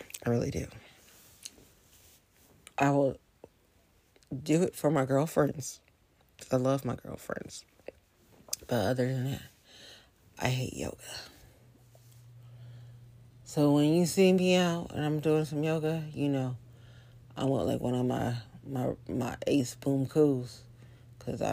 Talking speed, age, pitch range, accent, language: 130 wpm, 40-59, 120-150 Hz, American, English